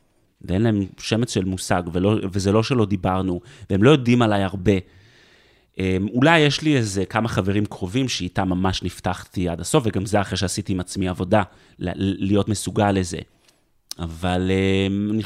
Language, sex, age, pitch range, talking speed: Hebrew, male, 30-49, 100-160 Hz, 155 wpm